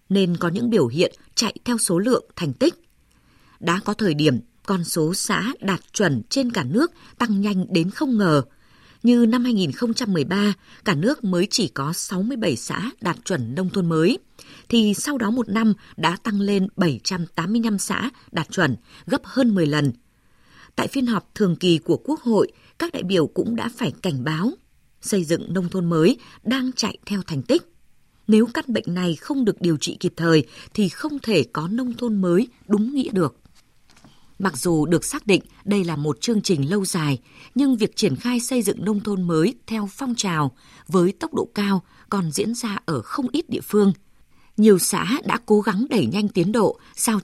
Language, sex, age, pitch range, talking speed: Vietnamese, female, 20-39, 165-225 Hz, 190 wpm